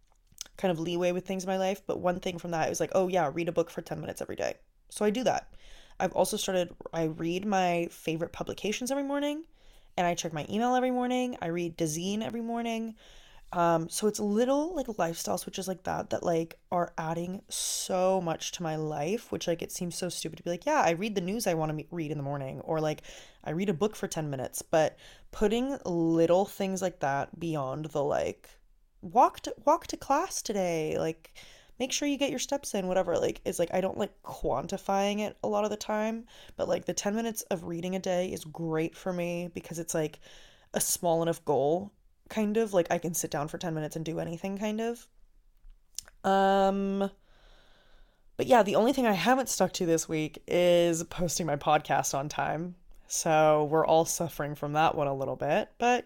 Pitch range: 165-210 Hz